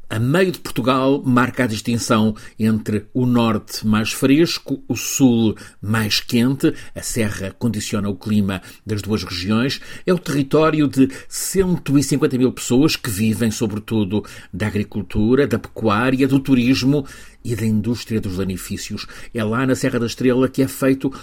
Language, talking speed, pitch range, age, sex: Portuguese, 155 wpm, 105-130 Hz, 50-69, male